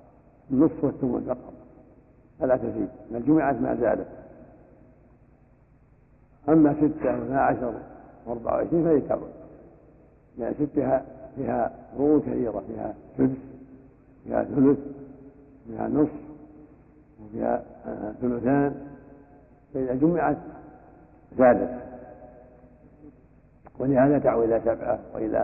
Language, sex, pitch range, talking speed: Arabic, male, 125-140 Hz, 90 wpm